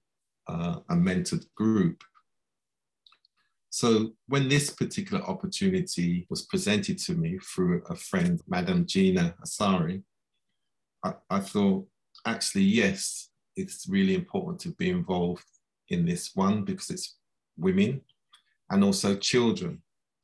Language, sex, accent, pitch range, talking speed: English, male, British, 170-190 Hz, 115 wpm